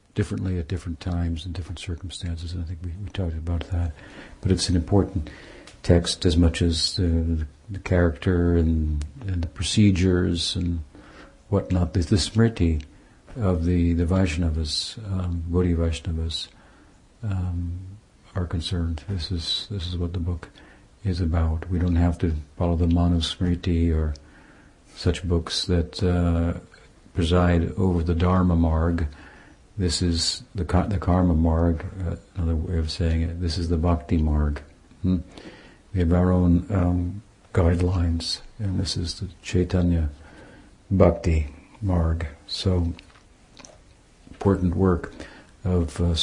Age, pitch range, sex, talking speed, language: 60-79, 85-95 Hz, male, 145 wpm, English